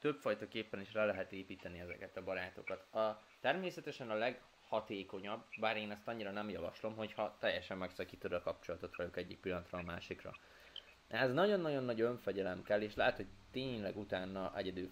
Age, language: 20-39, Hungarian